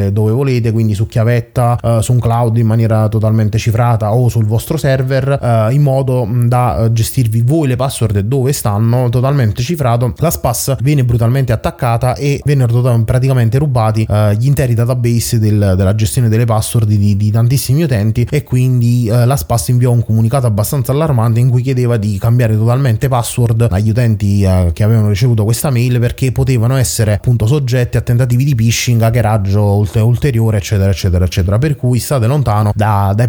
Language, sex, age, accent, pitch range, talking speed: Italian, male, 20-39, native, 110-130 Hz, 180 wpm